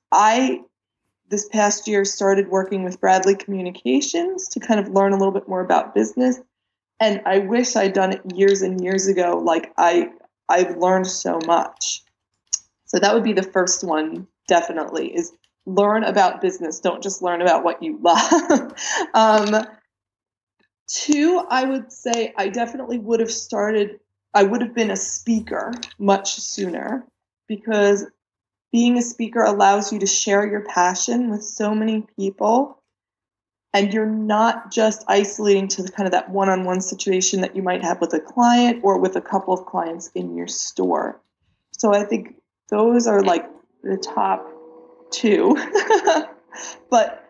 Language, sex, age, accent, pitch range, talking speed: English, female, 20-39, American, 190-235 Hz, 160 wpm